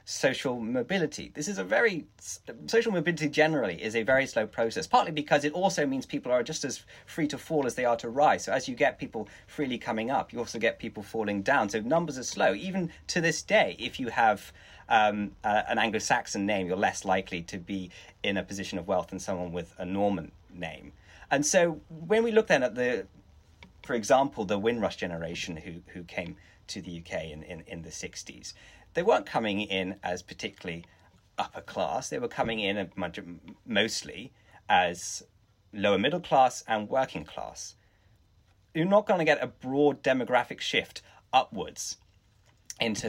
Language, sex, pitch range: English, male, 95-145 Hz